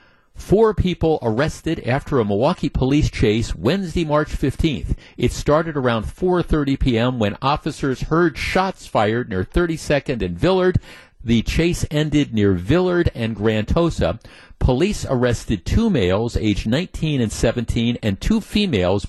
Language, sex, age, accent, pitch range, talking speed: English, male, 50-69, American, 115-160 Hz, 135 wpm